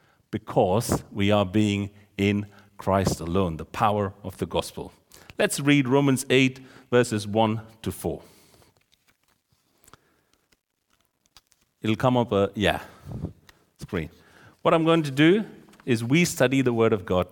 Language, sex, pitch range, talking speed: English, male, 95-135 Hz, 130 wpm